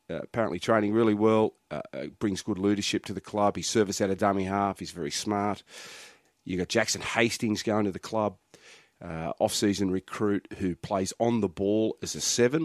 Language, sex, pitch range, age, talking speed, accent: English, male, 95-105 Hz, 40-59, 195 wpm, Australian